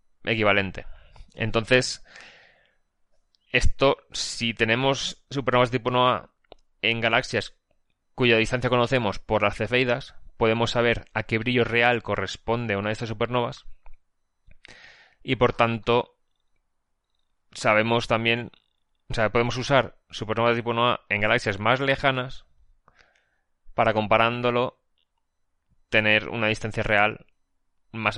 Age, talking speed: 20-39, 110 wpm